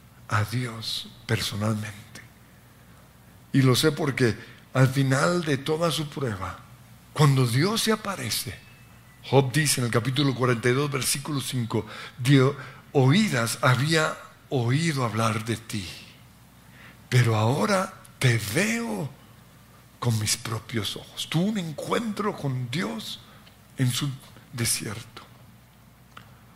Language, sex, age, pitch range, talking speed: Spanish, male, 60-79, 120-155 Hz, 110 wpm